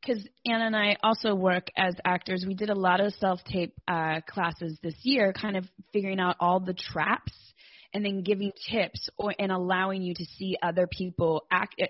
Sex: female